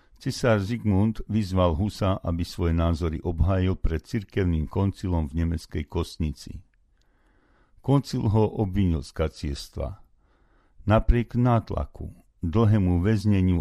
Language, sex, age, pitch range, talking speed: Slovak, male, 60-79, 80-105 Hz, 100 wpm